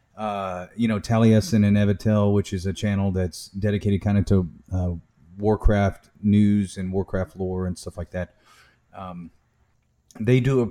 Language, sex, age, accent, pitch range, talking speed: English, male, 30-49, American, 95-110 Hz, 165 wpm